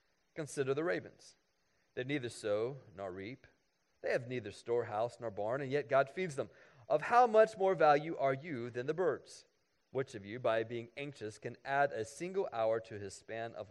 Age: 40-59